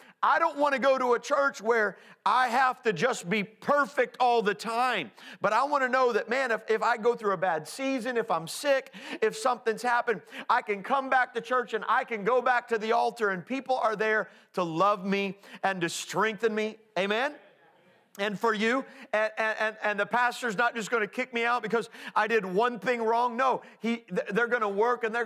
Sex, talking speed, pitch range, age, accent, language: male, 225 wpm, 180-245 Hz, 40-59, American, English